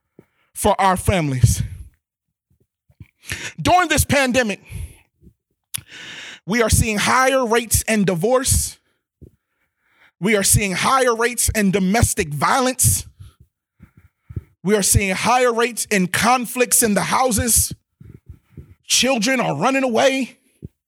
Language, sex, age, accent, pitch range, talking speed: English, male, 30-49, American, 235-295 Hz, 100 wpm